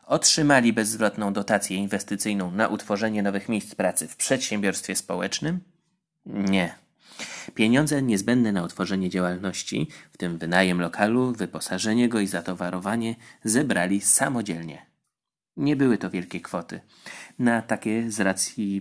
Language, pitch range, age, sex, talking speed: Polish, 95-120 Hz, 30-49, male, 120 wpm